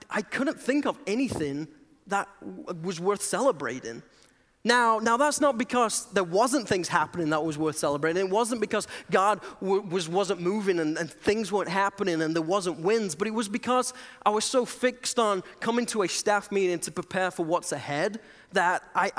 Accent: British